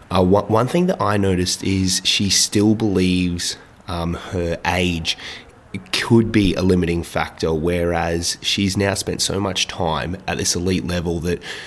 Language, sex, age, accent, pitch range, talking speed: English, male, 20-39, Australian, 80-95 Hz, 155 wpm